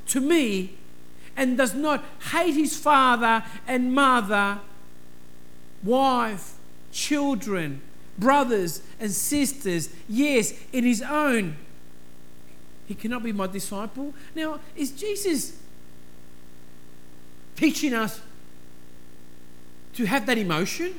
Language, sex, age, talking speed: English, male, 50-69, 95 wpm